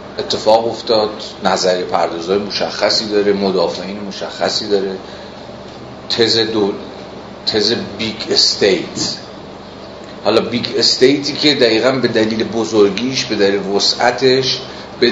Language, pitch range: Persian, 100-130 Hz